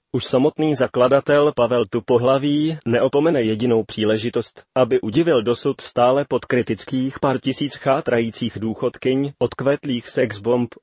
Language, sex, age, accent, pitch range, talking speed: Czech, male, 30-49, native, 115-135 Hz, 110 wpm